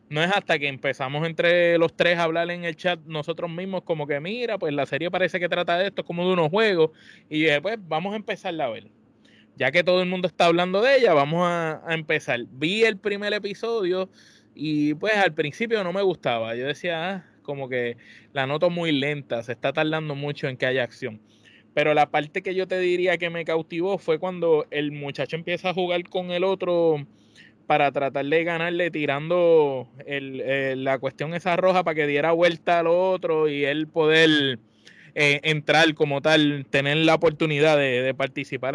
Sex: male